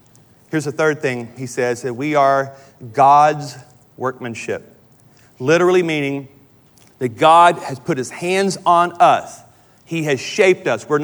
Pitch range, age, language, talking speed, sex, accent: 165-220 Hz, 40-59, English, 140 wpm, male, American